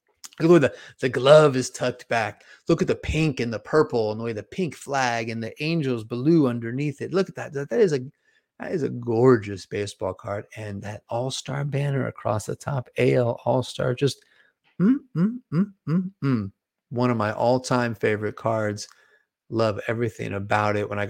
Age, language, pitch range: 30-49, English, 105-145 Hz